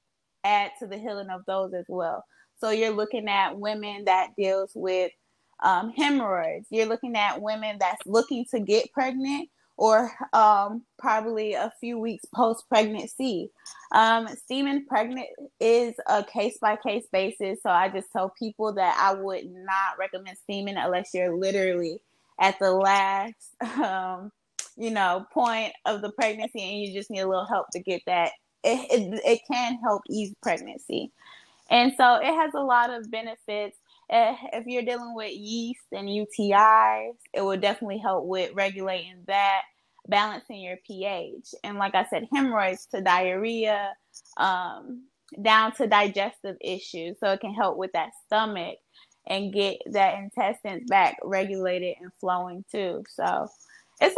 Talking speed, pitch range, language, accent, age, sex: 155 wpm, 195-235 Hz, English, American, 20-39, female